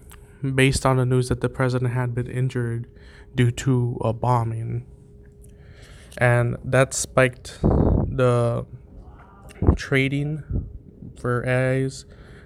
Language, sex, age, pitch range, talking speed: English, male, 20-39, 115-130 Hz, 100 wpm